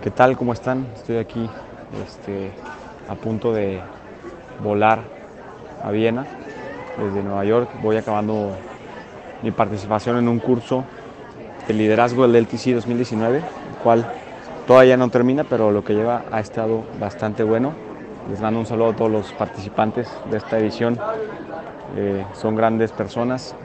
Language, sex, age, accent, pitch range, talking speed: Spanish, male, 30-49, Mexican, 110-125 Hz, 140 wpm